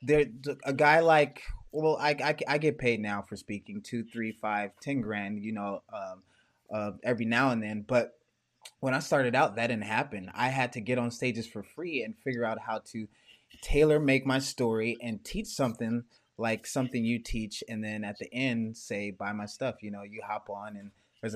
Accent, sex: American, male